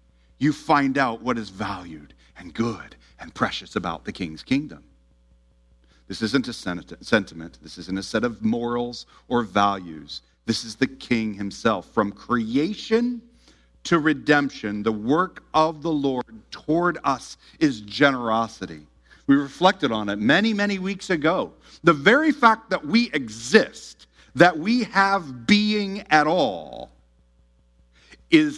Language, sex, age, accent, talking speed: English, male, 40-59, American, 135 wpm